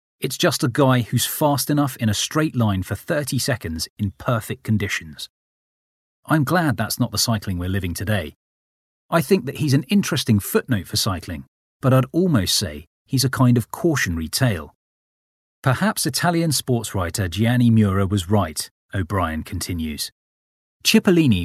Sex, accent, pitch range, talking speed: male, British, 95-135 Hz, 155 wpm